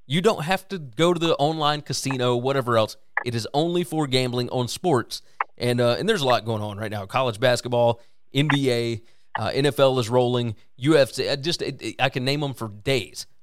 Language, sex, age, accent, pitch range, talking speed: English, male, 30-49, American, 120-145 Hz, 205 wpm